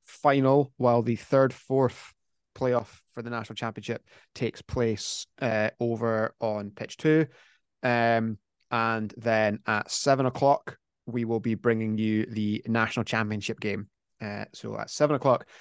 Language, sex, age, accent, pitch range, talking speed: English, male, 20-39, British, 110-125 Hz, 140 wpm